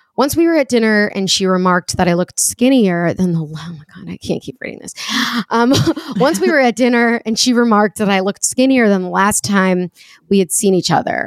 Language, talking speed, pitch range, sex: English, 235 wpm, 180-230 Hz, female